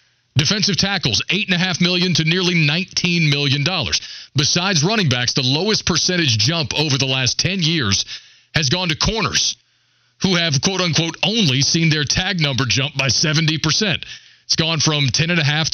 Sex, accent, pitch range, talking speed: male, American, 130-175 Hz, 150 wpm